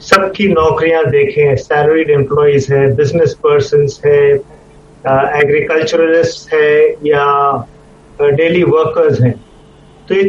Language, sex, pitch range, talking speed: Hindi, male, 145-225 Hz, 110 wpm